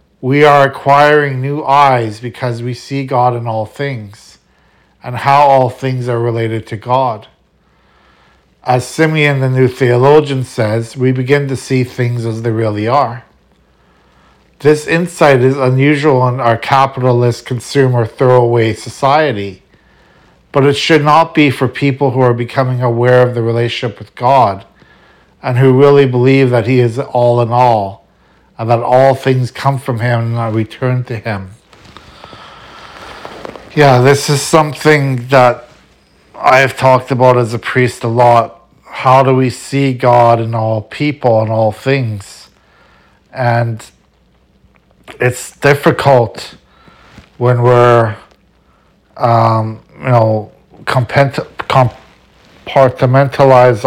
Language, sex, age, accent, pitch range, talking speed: English, male, 50-69, American, 115-135 Hz, 130 wpm